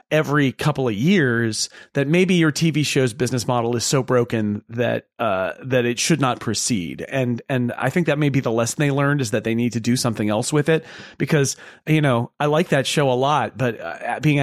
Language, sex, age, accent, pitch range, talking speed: English, male, 30-49, American, 115-145 Hz, 215 wpm